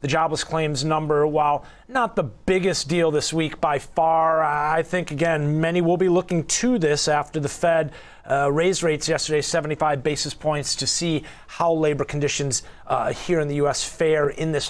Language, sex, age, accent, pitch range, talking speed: English, male, 30-49, American, 155-195 Hz, 185 wpm